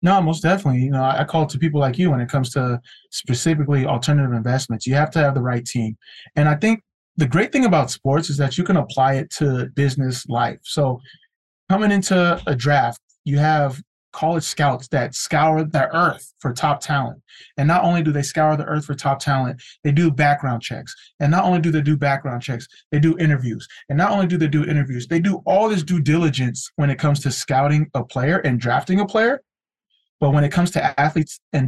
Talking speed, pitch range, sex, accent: 220 wpm, 130-155 Hz, male, American